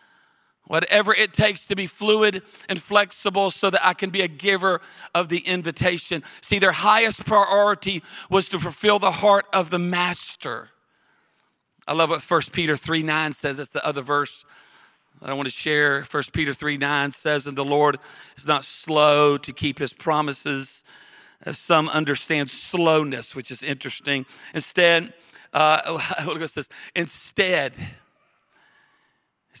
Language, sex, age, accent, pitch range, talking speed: English, male, 40-59, American, 155-225 Hz, 150 wpm